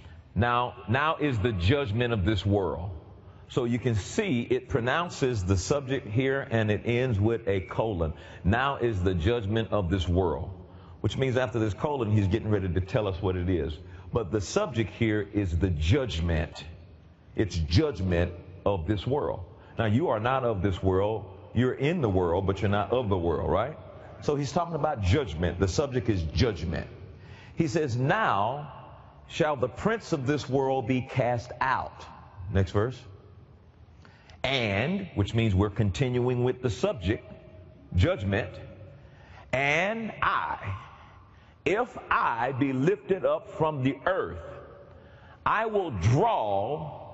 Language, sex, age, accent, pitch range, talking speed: English, male, 50-69, American, 95-130 Hz, 150 wpm